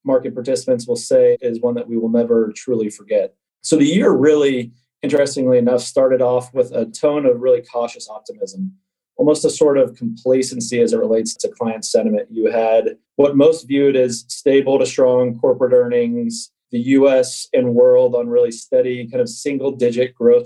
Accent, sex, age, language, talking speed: American, male, 30-49, English, 180 wpm